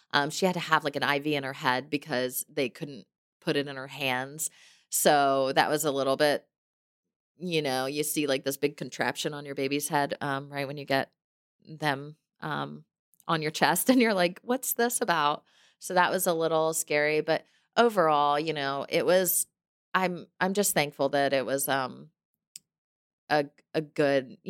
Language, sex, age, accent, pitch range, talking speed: English, female, 30-49, American, 140-175 Hz, 190 wpm